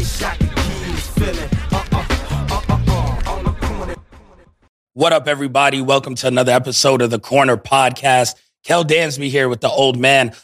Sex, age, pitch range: male, 30-49, 125-145 Hz